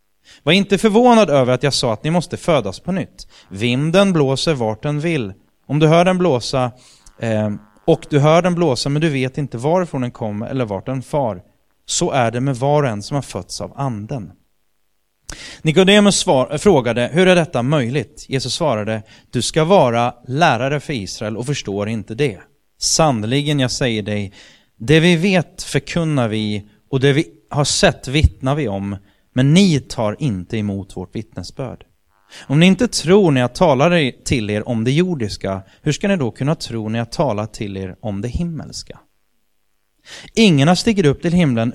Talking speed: 175 wpm